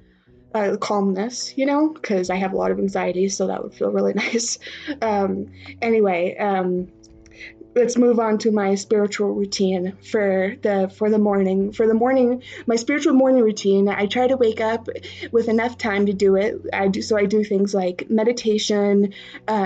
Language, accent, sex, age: English, American, female, 20-39